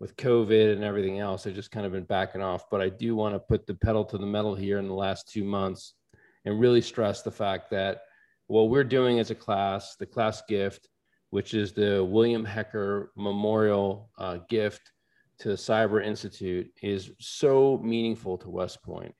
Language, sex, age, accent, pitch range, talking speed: English, male, 40-59, American, 100-115 Hz, 190 wpm